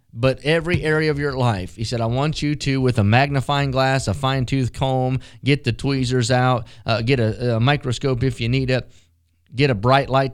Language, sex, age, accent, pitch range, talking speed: English, male, 30-49, American, 110-145 Hz, 210 wpm